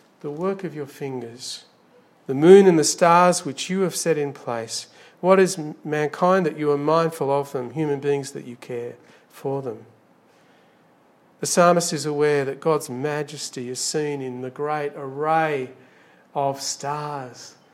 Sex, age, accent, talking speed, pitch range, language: male, 50-69, Australian, 160 wpm, 135-165 Hz, English